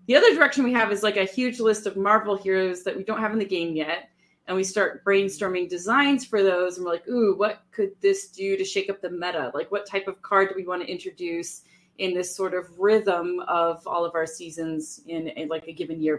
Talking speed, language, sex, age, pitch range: 250 wpm, English, female, 30-49, 175-215 Hz